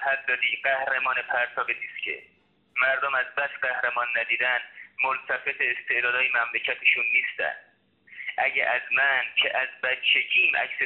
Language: Persian